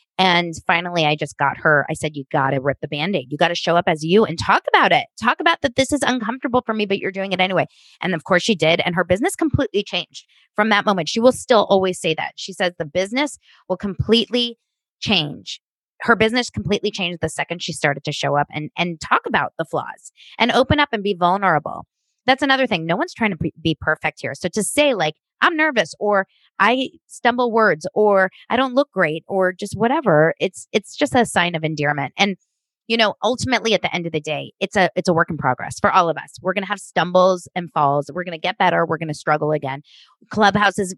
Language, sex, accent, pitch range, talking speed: English, female, American, 160-220 Hz, 230 wpm